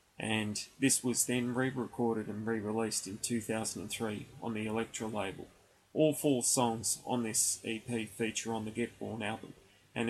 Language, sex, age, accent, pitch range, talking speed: English, male, 20-39, Australian, 110-125 Hz, 155 wpm